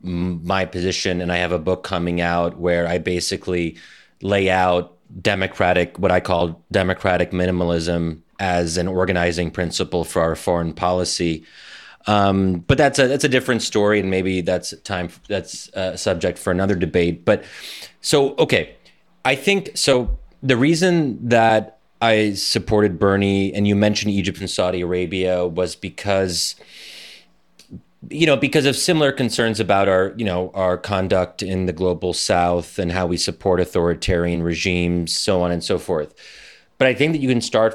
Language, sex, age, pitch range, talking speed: English, male, 30-49, 90-105 Hz, 160 wpm